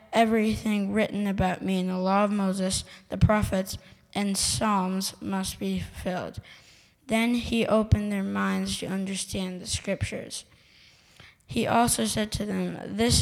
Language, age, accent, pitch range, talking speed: English, 20-39, American, 190-210 Hz, 140 wpm